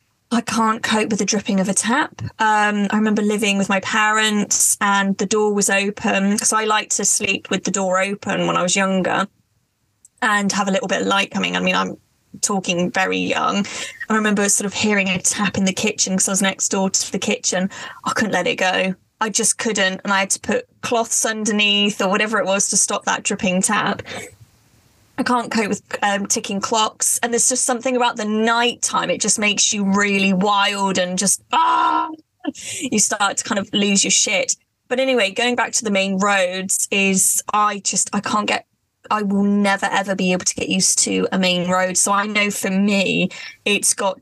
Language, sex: English, female